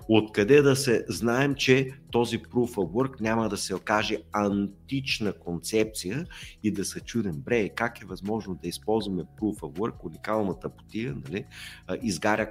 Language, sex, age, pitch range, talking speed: Bulgarian, male, 50-69, 95-120 Hz, 155 wpm